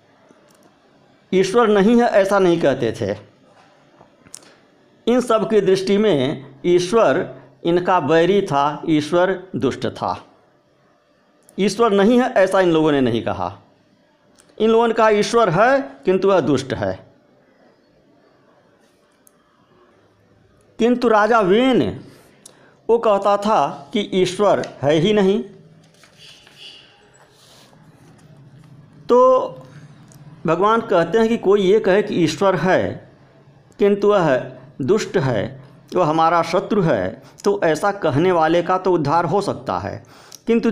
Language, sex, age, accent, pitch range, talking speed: Hindi, male, 50-69, native, 145-205 Hz, 115 wpm